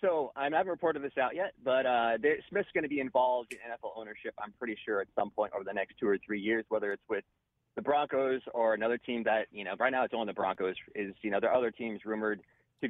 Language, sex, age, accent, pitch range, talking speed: English, male, 30-49, American, 110-140 Hz, 265 wpm